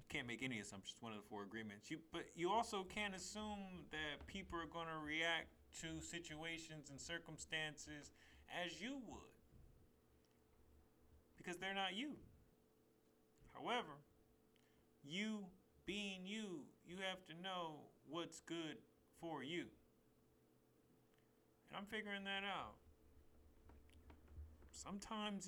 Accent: American